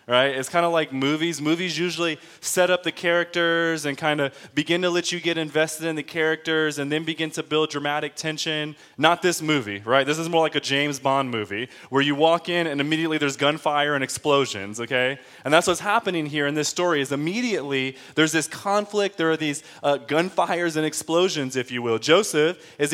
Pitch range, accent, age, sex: 145-175 Hz, American, 20-39, male